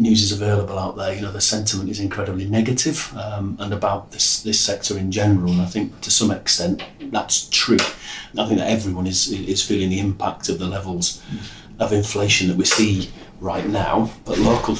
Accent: British